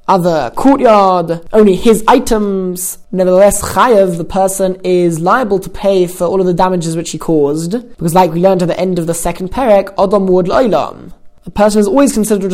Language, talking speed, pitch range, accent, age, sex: English, 190 wpm, 175-210 Hz, British, 20-39, male